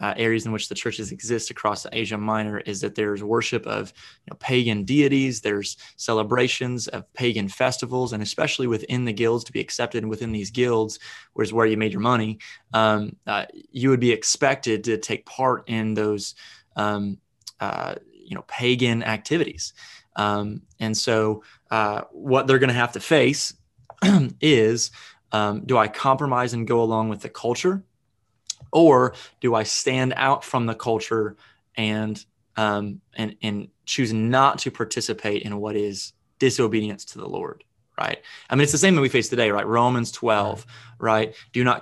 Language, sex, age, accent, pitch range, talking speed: English, male, 20-39, American, 105-125 Hz, 170 wpm